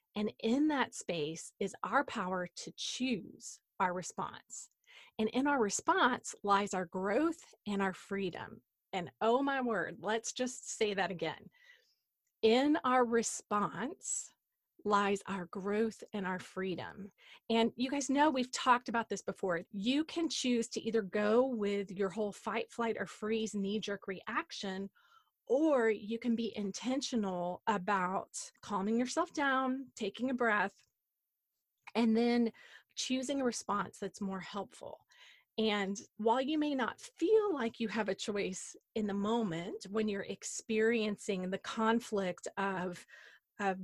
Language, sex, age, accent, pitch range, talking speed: English, female, 30-49, American, 200-255 Hz, 145 wpm